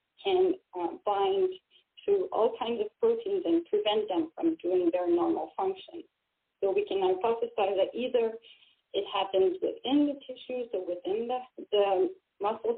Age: 30-49